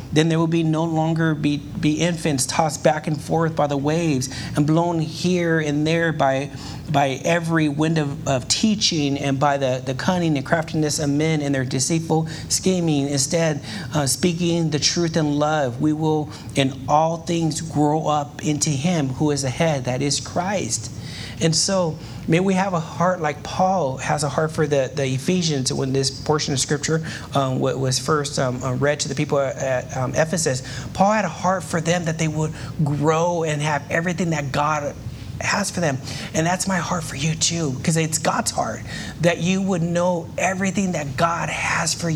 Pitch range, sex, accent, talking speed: 140-170 Hz, male, American, 190 wpm